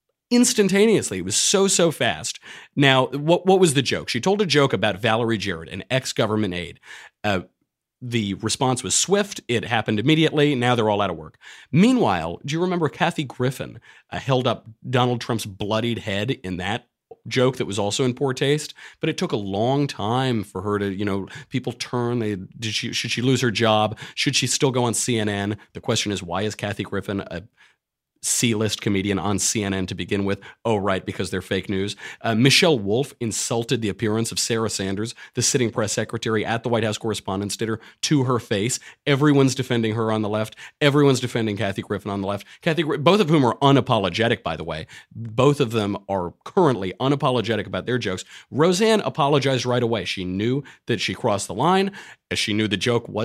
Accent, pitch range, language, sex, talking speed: American, 105-135 Hz, English, male, 195 wpm